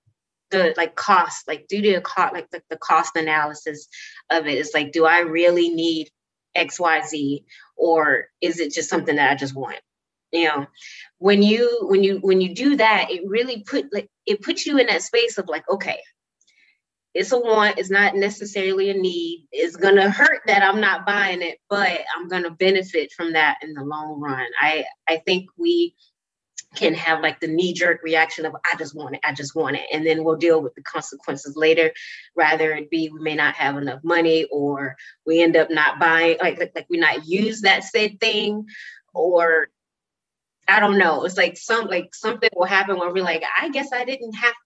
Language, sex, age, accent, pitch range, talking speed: English, female, 20-39, American, 160-220 Hz, 205 wpm